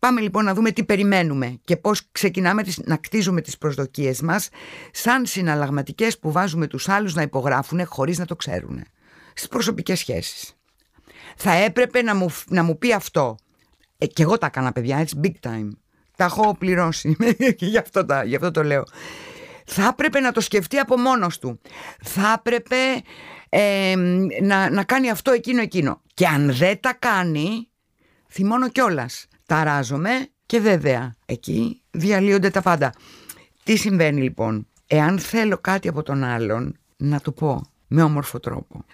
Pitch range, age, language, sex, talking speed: 145-210 Hz, 50-69, Greek, female, 155 wpm